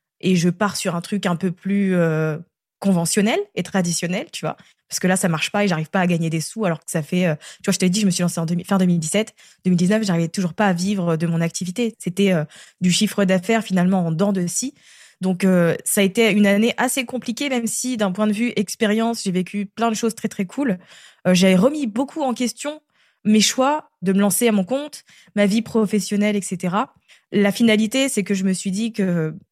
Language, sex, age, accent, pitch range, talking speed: French, female, 20-39, French, 180-230 Hz, 235 wpm